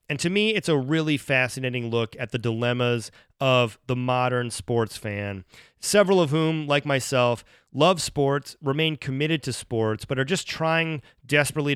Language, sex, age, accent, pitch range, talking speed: English, male, 30-49, American, 120-145 Hz, 165 wpm